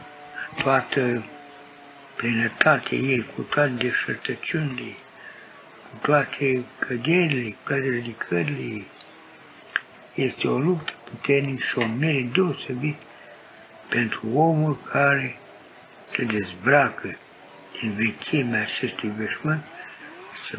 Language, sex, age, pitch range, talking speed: Romanian, male, 60-79, 120-150 Hz, 85 wpm